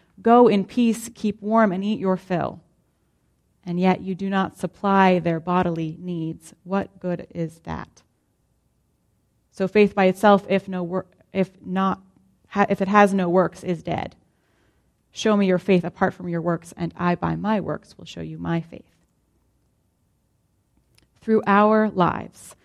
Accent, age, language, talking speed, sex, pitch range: American, 30-49, English, 160 wpm, female, 180-210 Hz